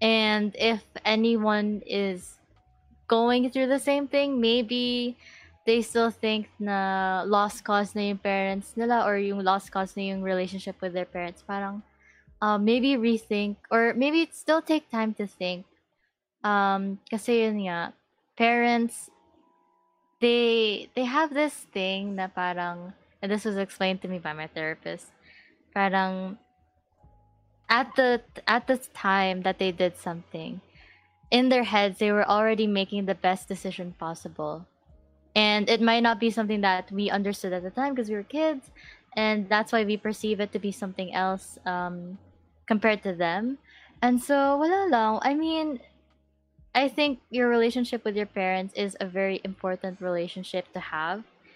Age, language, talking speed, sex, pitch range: 20-39, Filipino, 150 wpm, female, 190-235 Hz